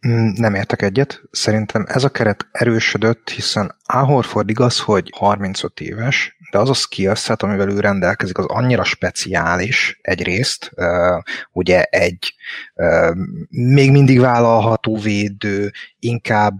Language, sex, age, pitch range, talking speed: Hungarian, male, 30-49, 100-115 Hz, 120 wpm